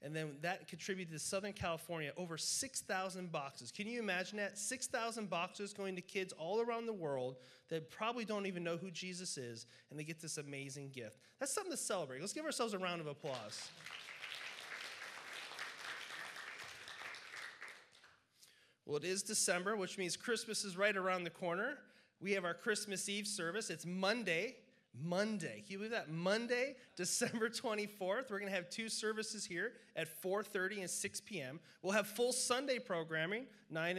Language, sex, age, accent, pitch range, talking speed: English, male, 30-49, American, 160-205 Hz, 165 wpm